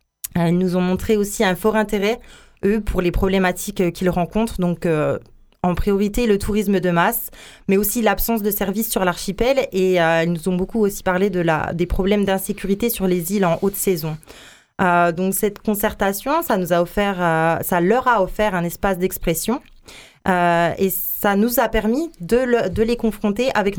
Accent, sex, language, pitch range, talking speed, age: French, female, French, 175-210 Hz, 190 wpm, 20-39